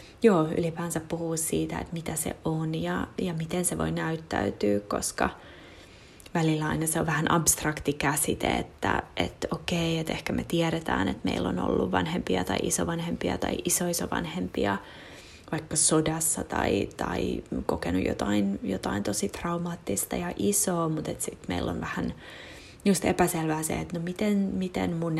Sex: female